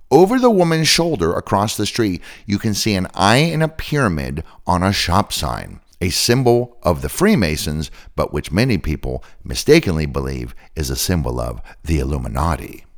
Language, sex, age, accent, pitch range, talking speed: English, male, 50-69, American, 75-120 Hz, 165 wpm